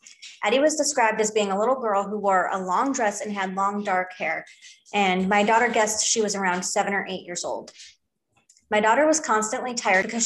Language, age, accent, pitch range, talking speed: English, 20-39, American, 190-230 Hz, 210 wpm